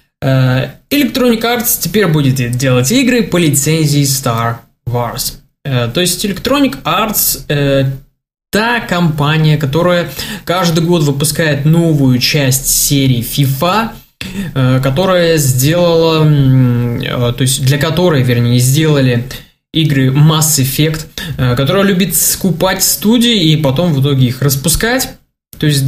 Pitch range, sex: 135-185 Hz, male